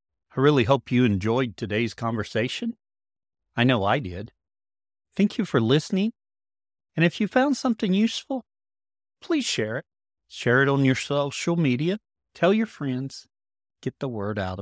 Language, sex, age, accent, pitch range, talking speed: English, male, 40-59, American, 105-175 Hz, 150 wpm